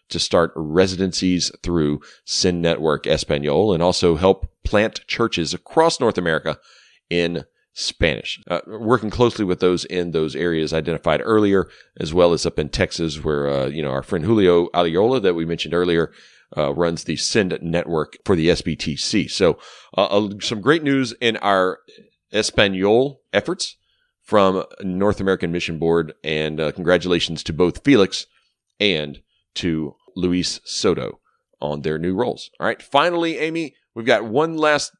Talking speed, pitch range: 155 wpm, 85-110 Hz